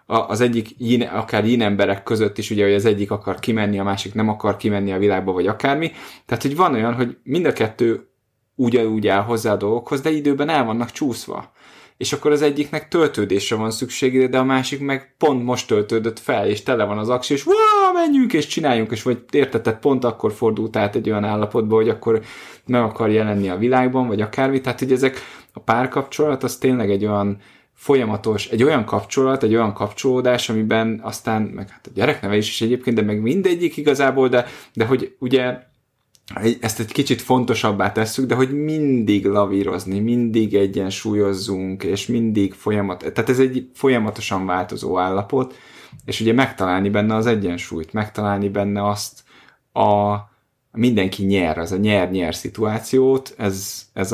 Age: 20-39